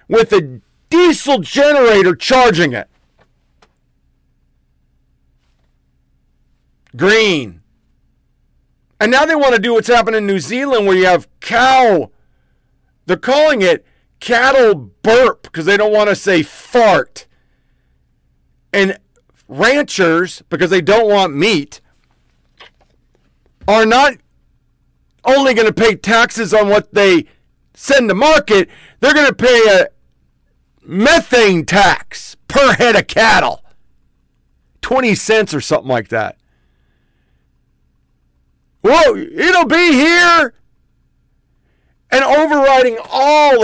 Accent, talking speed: American, 105 wpm